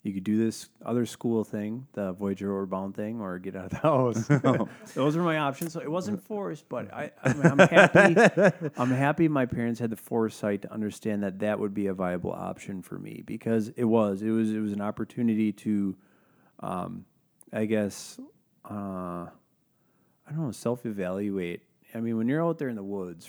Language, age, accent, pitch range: English, 30-49, American, 100-115 Hz